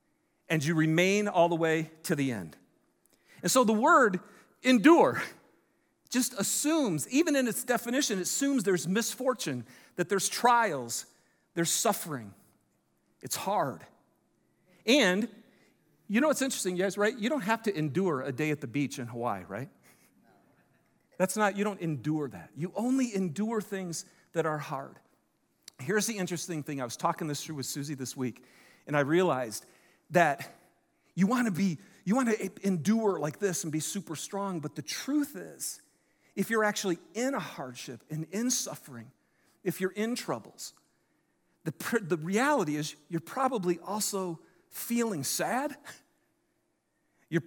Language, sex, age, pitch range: English, male, 50-69, 160-250 Hz